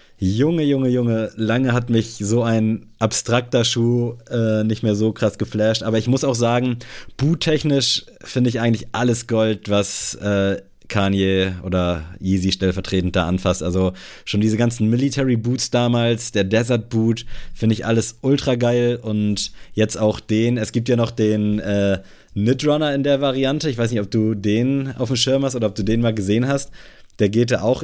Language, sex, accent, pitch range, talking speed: German, male, German, 95-120 Hz, 185 wpm